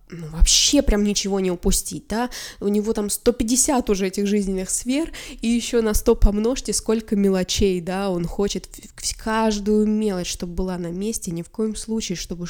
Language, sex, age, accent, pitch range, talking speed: Russian, female, 20-39, native, 195-240 Hz, 175 wpm